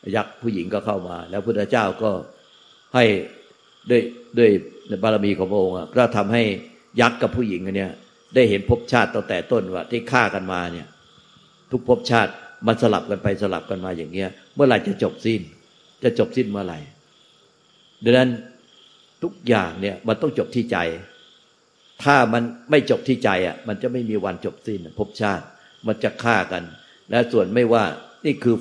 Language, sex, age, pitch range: Thai, male, 60-79, 100-120 Hz